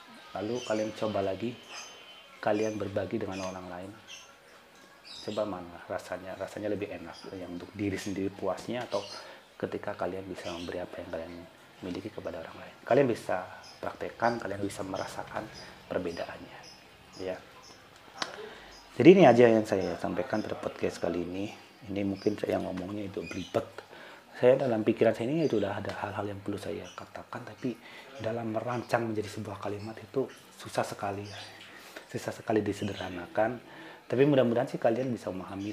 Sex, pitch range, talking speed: male, 90-110 Hz, 145 wpm